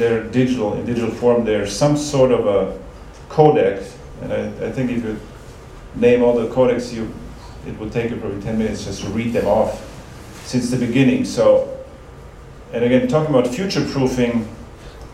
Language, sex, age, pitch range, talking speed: English, male, 40-59, 115-140 Hz, 175 wpm